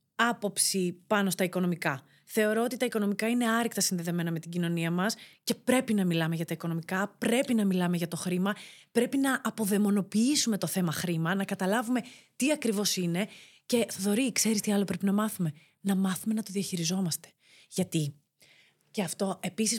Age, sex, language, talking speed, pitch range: 30-49, female, Greek, 170 wpm, 175-235 Hz